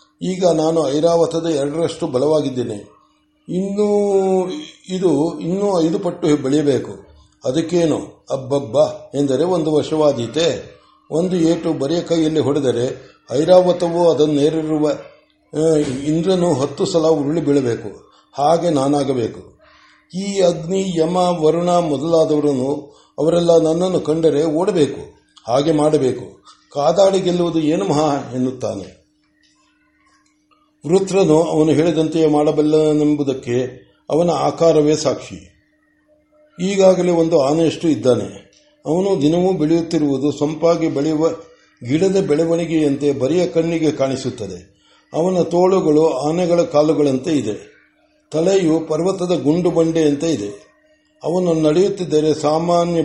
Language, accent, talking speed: Kannada, native, 90 wpm